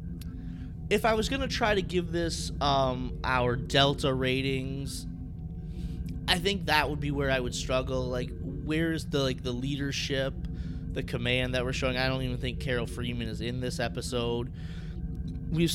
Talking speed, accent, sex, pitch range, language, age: 165 wpm, American, male, 115-140 Hz, English, 20-39